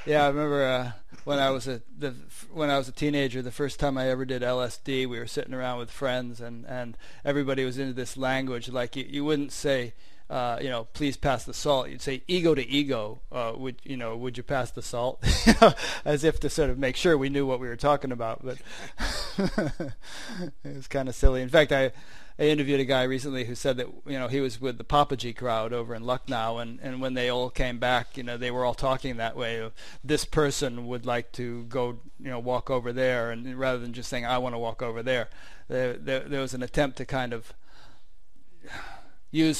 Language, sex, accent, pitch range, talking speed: English, male, American, 125-140 Hz, 230 wpm